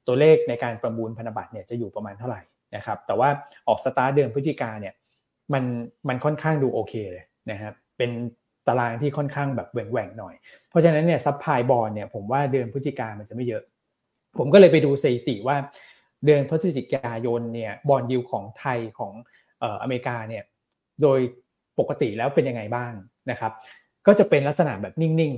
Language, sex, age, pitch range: Thai, male, 20-39, 115-145 Hz